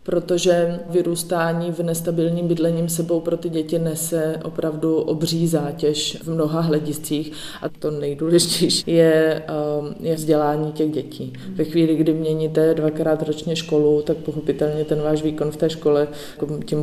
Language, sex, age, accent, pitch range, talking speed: Czech, female, 20-39, native, 150-170 Hz, 145 wpm